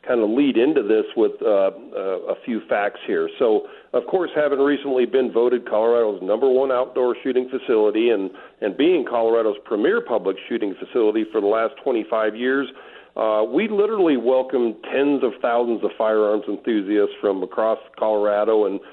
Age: 50-69